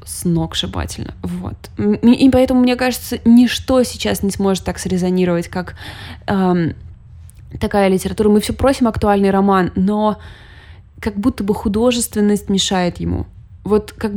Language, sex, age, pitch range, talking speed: Russian, female, 20-39, 170-215 Hz, 125 wpm